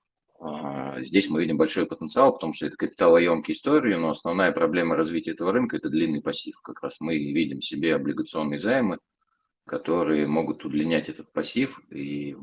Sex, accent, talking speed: male, native, 170 wpm